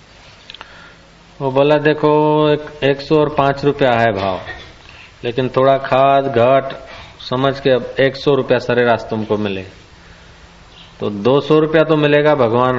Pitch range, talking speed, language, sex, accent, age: 120-165 Hz, 145 wpm, Hindi, male, native, 40-59